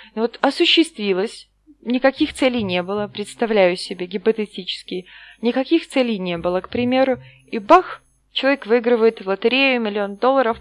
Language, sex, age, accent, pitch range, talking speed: Russian, female, 20-39, native, 210-270 Hz, 130 wpm